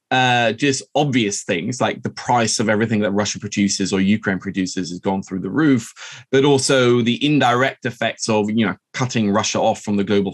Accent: British